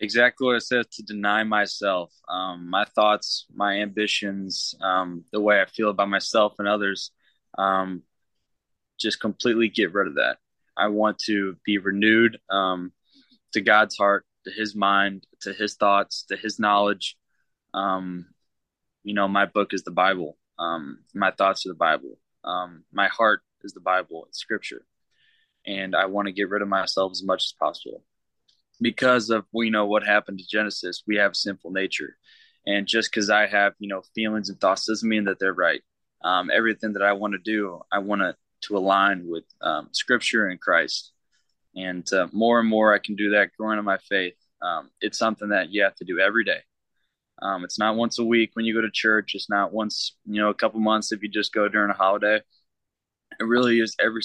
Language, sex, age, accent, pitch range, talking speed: English, male, 20-39, American, 95-110 Hz, 195 wpm